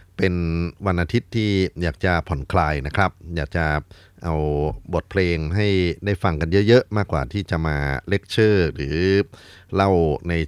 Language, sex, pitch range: Thai, male, 80-95 Hz